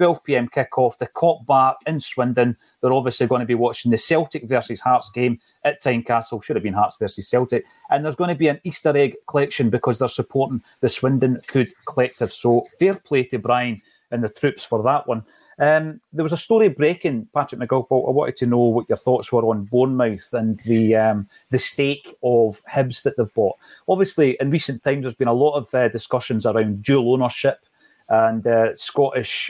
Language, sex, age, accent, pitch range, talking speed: English, male, 30-49, British, 120-140 Hz, 205 wpm